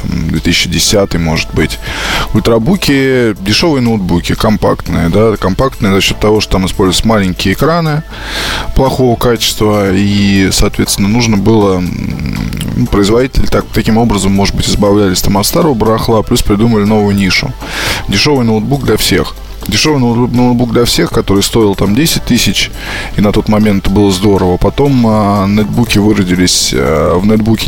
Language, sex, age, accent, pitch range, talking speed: Russian, male, 20-39, native, 95-115 Hz, 135 wpm